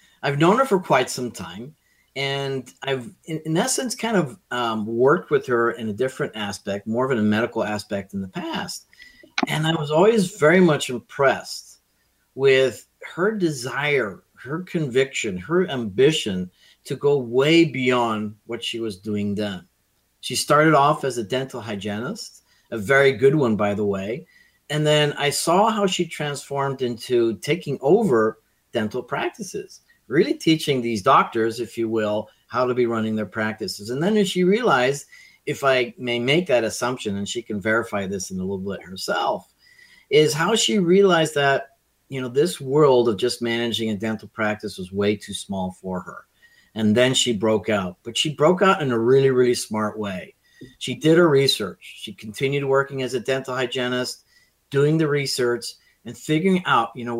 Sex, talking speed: male, 175 wpm